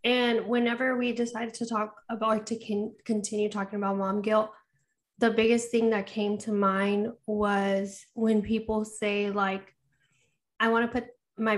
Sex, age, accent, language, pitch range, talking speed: female, 10-29, American, English, 205-230 Hz, 160 wpm